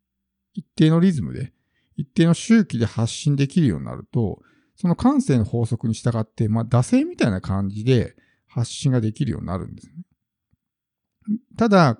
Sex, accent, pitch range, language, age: male, native, 110-155 Hz, Japanese, 50-69